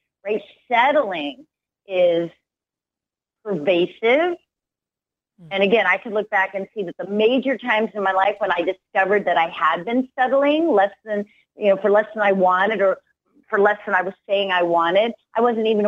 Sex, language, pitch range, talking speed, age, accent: female, English, 185-235 Hz, 180 wpm, 40-59, American